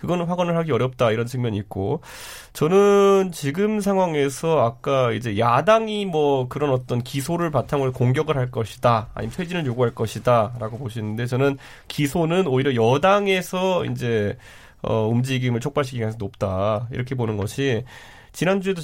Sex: male